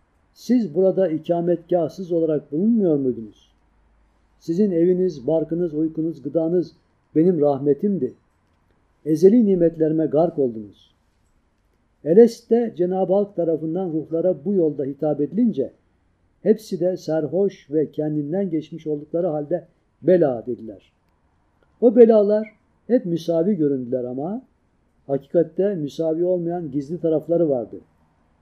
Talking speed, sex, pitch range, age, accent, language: 100 wpm, male, 115-185 Hz, 60-79, native, Turkish